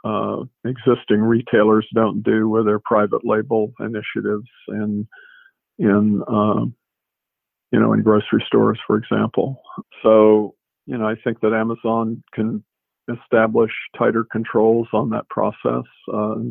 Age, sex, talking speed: 50-69, male, 130 wpm